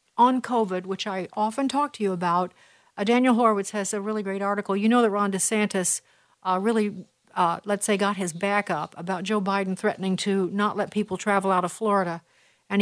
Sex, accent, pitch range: female, American, 190-240 Hz